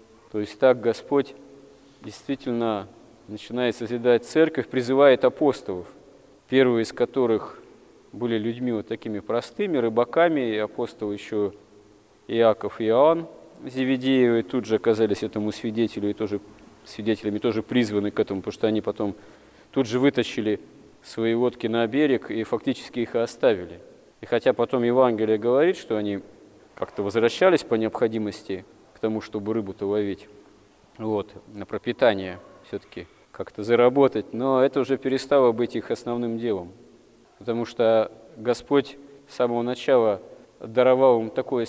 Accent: native